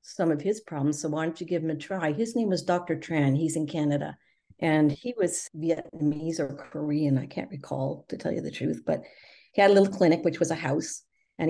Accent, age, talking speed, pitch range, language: American, 50-69, 235 wpm, 145-170 Hz, English